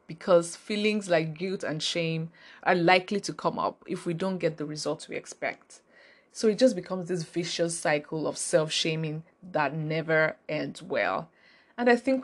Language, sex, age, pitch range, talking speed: English, female, 20-39, 165-220 Hz, 170 wpm